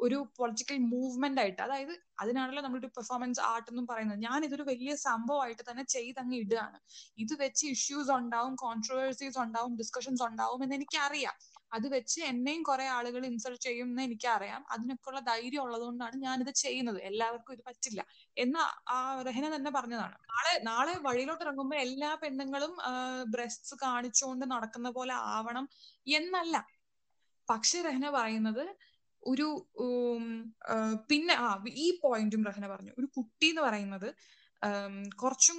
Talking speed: 130 wpm